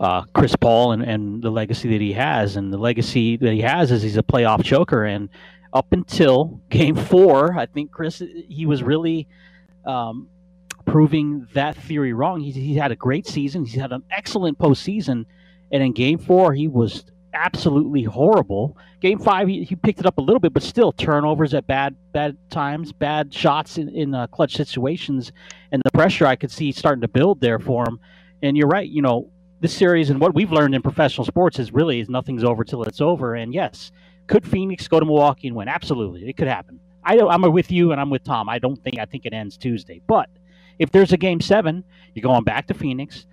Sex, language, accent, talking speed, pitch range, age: male, English, American, 215 wpm, 125-170 Hz, 40-59